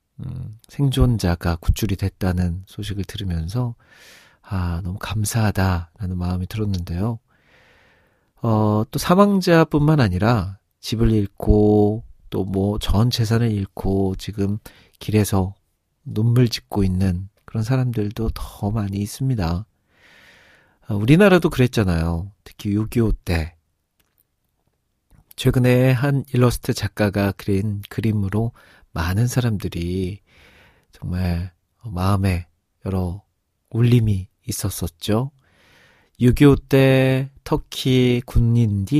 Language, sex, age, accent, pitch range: Korean, male, 40-59, native, 95-120 Hz